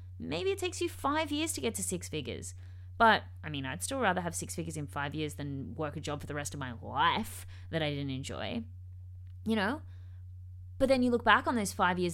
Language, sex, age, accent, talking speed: English, female, 20-39, Australian, 235 wpm